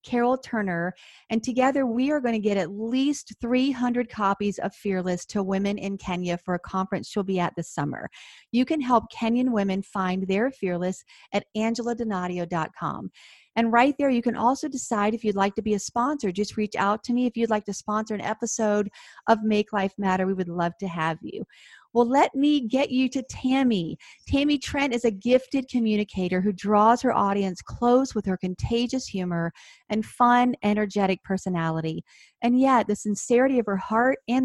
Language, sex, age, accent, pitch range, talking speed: English, female, 40-59, American, 195-240 Hz, 190 wpm